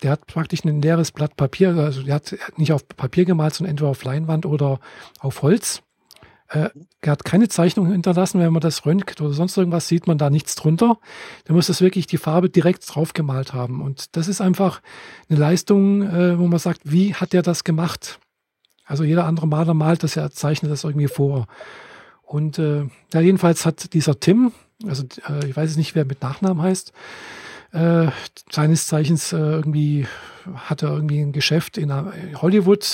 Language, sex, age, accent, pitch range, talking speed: German, male, 40-59, German, 150-180 Hz, 195 wpm